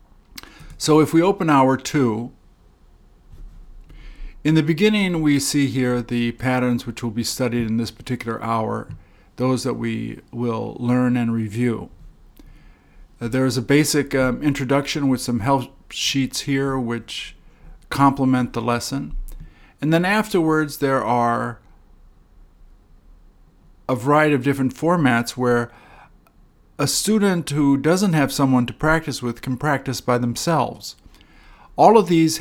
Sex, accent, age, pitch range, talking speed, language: male, American, 50-69, 120-145 Hz, 135 wpm, English